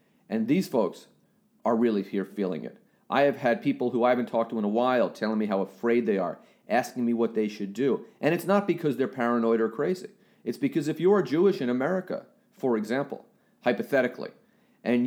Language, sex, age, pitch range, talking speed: English, male, 40-59, 120-180 Hz, 205 wpm